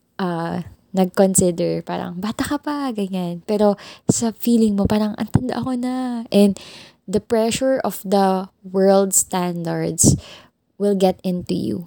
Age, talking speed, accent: 20-39, 130 wpm, native